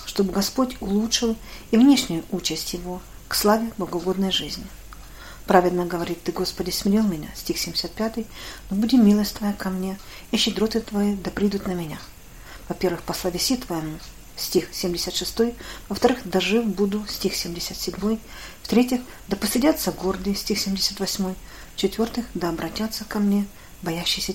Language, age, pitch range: Russian, 40-59, 180-220 Hz